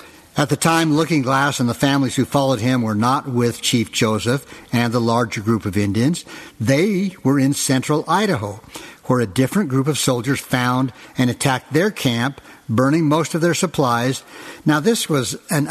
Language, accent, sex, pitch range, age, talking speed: English, American, male, 125-155 Hz, 60-79, 180 wpm